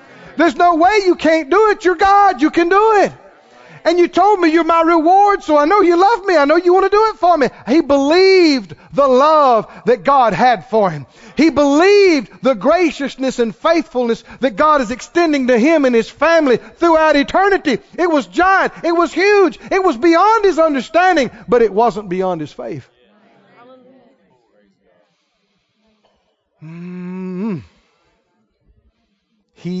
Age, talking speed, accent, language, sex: 50-69, 160 wpm, American, English, male